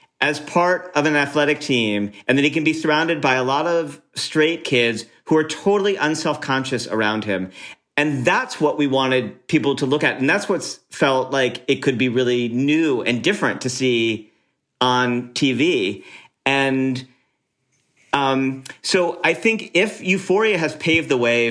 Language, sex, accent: English, male, American